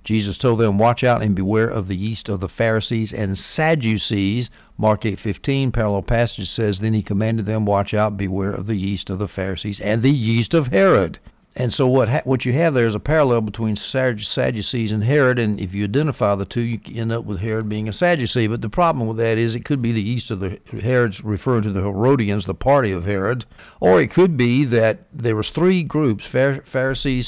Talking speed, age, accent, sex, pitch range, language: 215 wpm, 60-79, American, male, 105-130 Hz, English